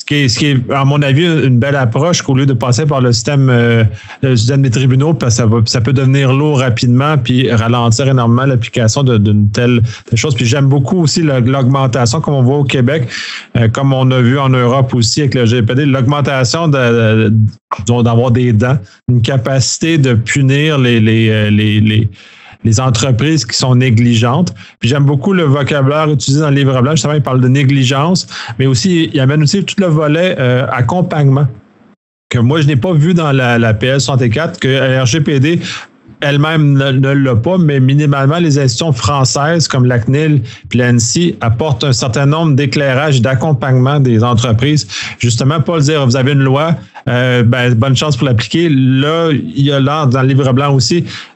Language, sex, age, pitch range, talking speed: French, male, 30-49, 120-145 Hz, 195 wpm